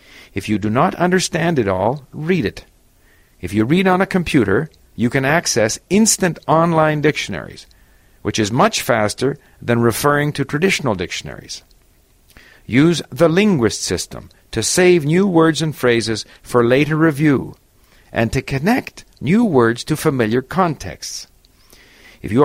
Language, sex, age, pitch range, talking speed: English, male, 50-69, 110-165 Hz, 140 wpm